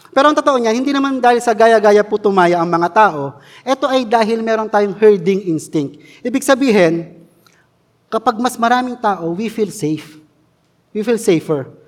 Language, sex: Filipino, male